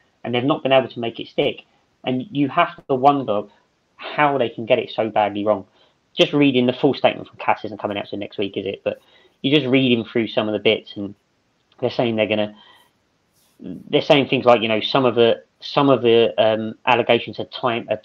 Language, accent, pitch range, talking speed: English, British, 105-145 Hz, 230 wpm